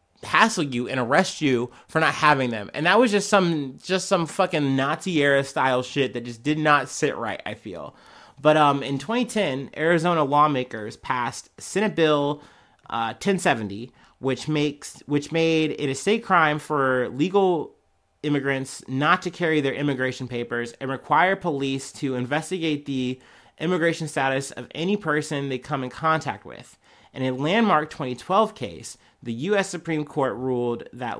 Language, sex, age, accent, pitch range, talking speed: English, male, 30-49, American, 130-165 Hz, 160 wpm